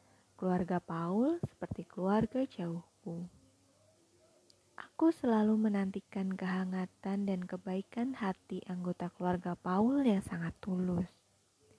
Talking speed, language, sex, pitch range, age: 90 wpm, Indonesian, female, 170-200 Hz, 20-39